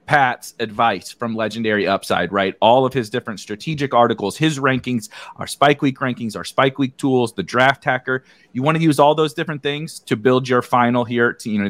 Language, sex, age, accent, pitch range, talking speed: English, male, 30-49, American, 105-135 Hz, 210 wpm